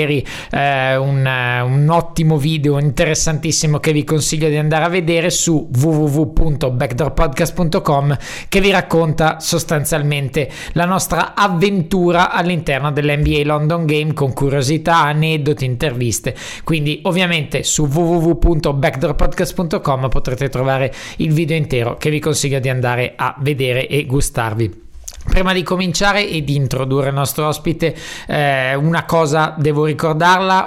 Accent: native